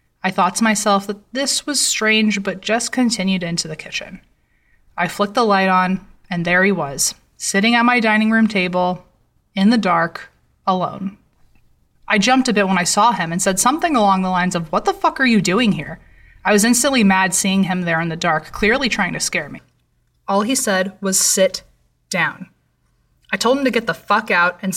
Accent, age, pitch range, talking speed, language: American, 20-39, 180-220 Hz, 205 wpm, English